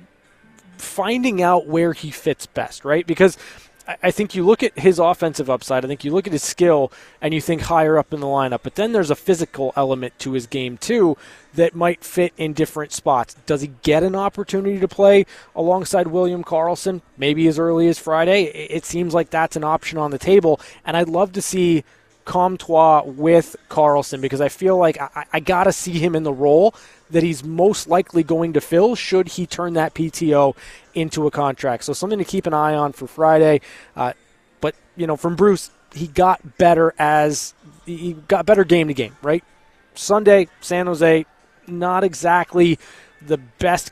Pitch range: 145-175 Hz